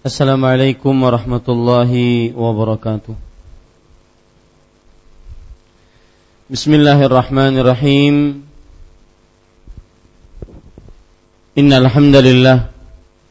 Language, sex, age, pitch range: Malay, male, 30-49, 115-130 Hz